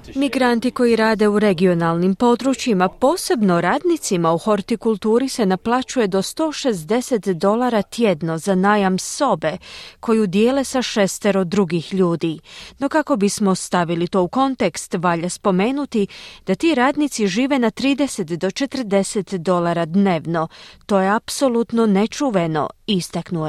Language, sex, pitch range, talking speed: Croatian, female, 180-245 Hz, 125 wpm